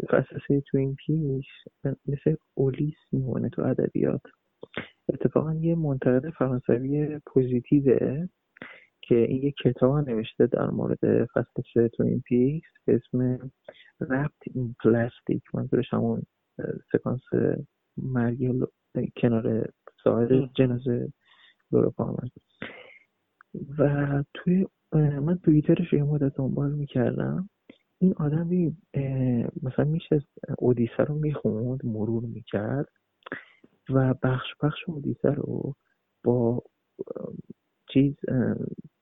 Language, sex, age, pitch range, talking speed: Persian, male, 20-39, 125-150 Hz, 100 wpm